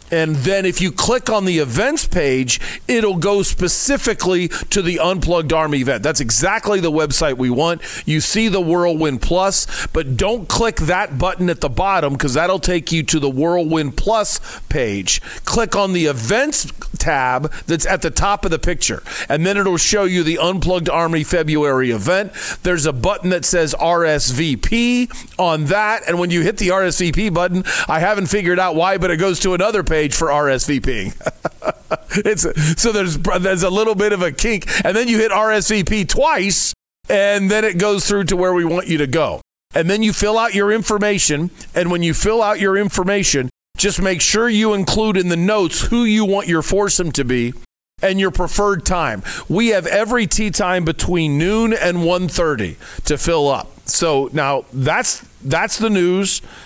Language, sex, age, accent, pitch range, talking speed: English, male, 40-59, American, 155-200 Hz, 185 wpm